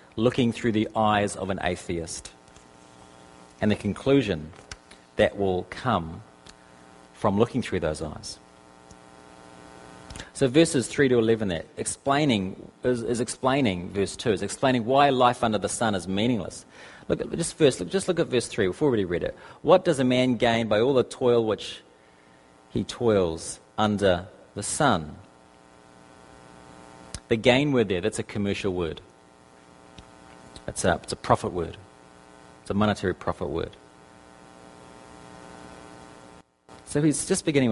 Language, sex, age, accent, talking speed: English, male, 40-59, Australian, 140 wpm